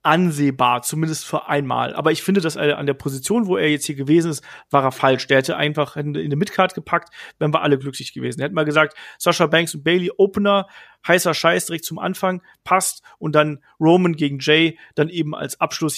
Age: 40-59